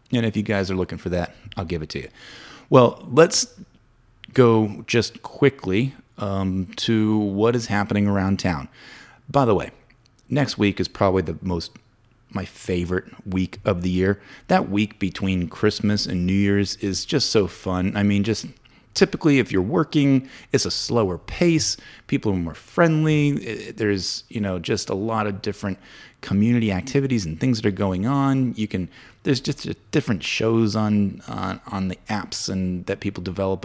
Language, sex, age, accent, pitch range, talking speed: English, male, 30-49, American, 95-115 Hz, 175 wpm